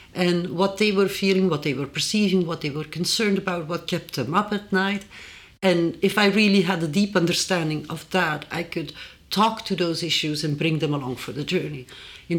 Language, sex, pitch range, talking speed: English, female, 160-190 Hz, 215 wpm